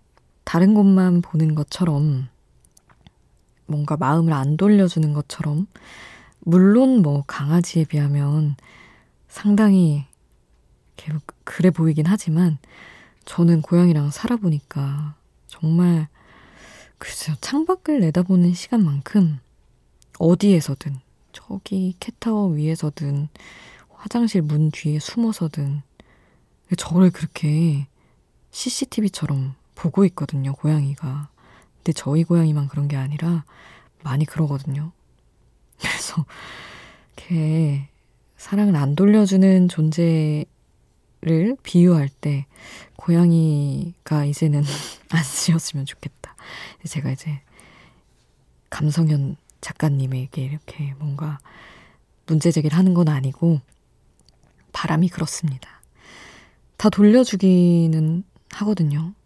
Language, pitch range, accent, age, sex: Korean, 145-175 Hz, native, 20-39, female